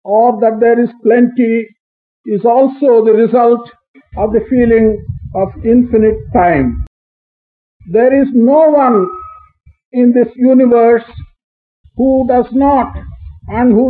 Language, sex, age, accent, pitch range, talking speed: English, male, 50-69, Indian, 225-270 Hz, 115 wpm